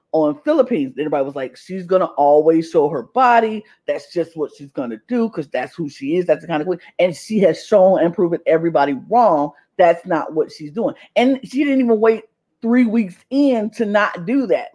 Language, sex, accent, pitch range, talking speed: English, female, American, 165-235 Hz, 220 wpm